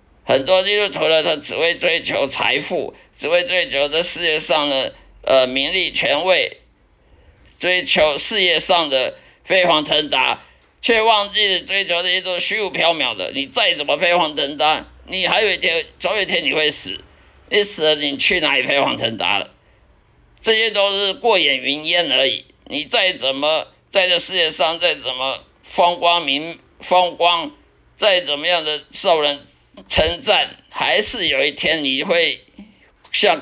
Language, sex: Chinese, male